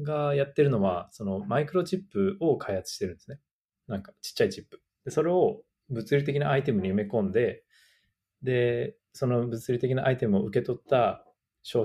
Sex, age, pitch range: male, 20-39, 115-150 Hz